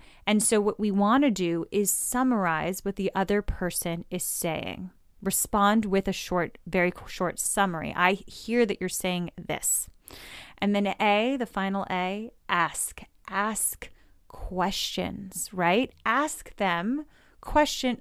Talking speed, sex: 135 wpm, female